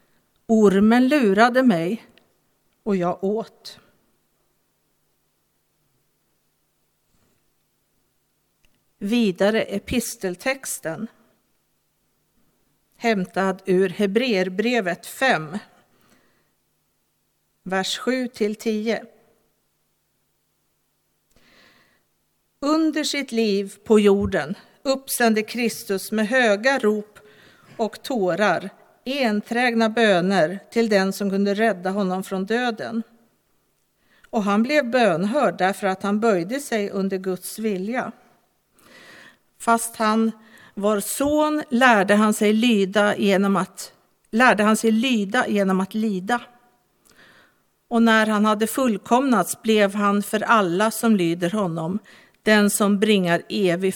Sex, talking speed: female, 90 wpm